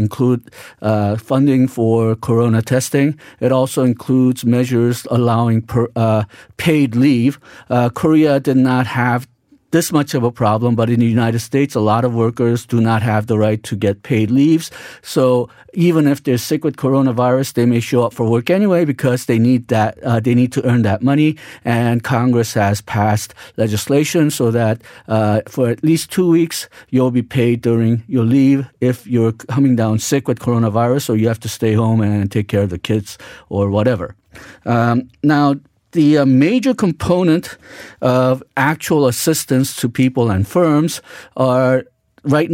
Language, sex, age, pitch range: Korean, male, 50-69, 115-135 Hz